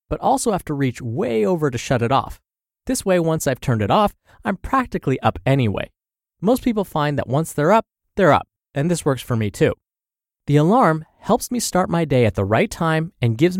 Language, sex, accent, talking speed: English, male, American, 220 wpm